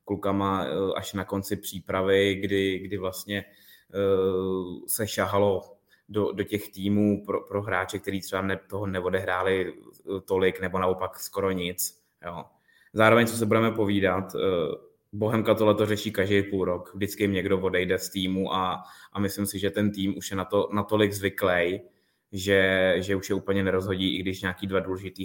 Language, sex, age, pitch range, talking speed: Czech, male, 20-39, 95-105 Hz, 165 wpm